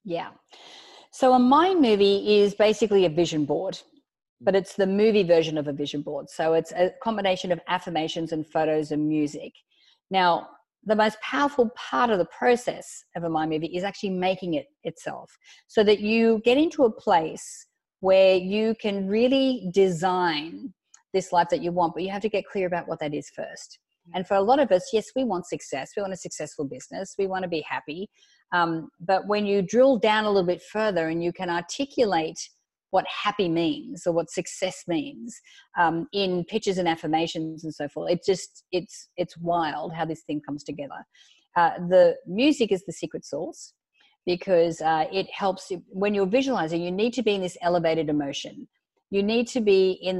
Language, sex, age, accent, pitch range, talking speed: English, female, 50-69, Australian, 170-215 Hz, 190 wpm